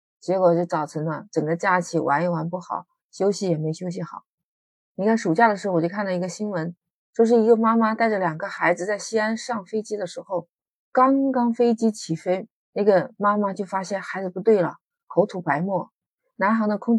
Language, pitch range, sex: Chinese, 170-210 Hz, female